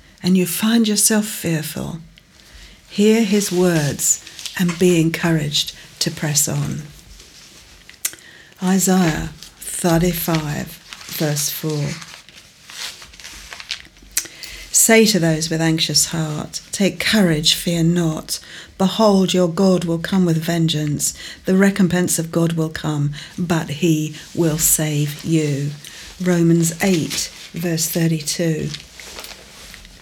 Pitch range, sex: 155-185 Hz, female